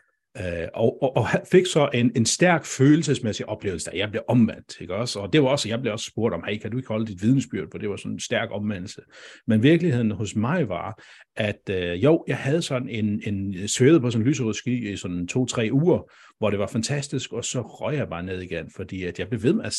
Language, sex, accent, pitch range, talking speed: Danish, male, native, 105-145 Hz, 240 wpm